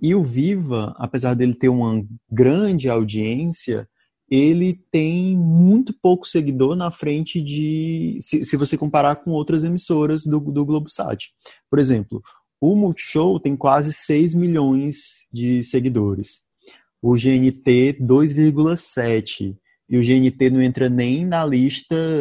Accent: Brazilian